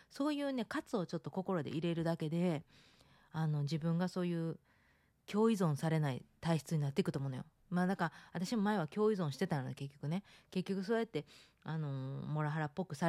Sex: female